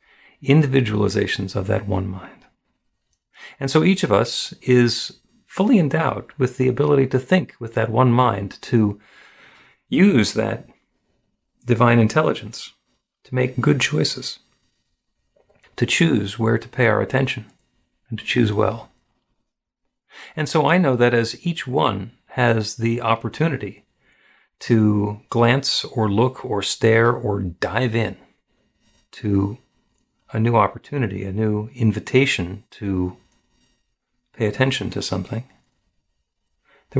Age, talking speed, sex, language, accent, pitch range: 50-69, 120 wpm, male, English, American, 105-130 Hz